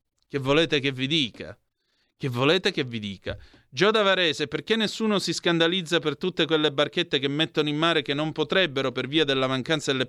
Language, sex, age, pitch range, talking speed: Italian, male, 30-49, 140-175 Hz, 190 wpm